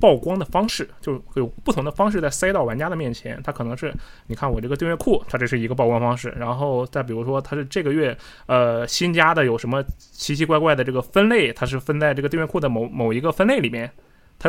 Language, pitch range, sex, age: Chinese, 125-165 Hz, male, 20-39